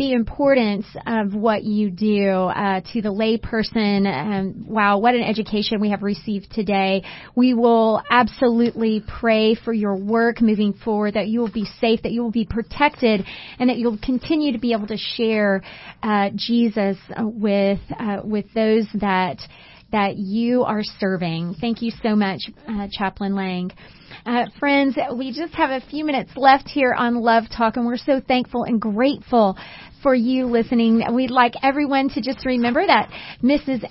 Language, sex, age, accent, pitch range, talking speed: English, female, 30-49, American, 210-260 Hz, 165 wpm